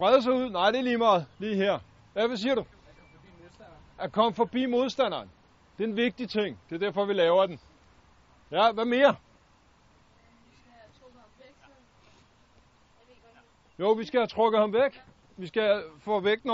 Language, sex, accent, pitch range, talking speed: Danish, male, native, 200-265 Hz, 145 wpm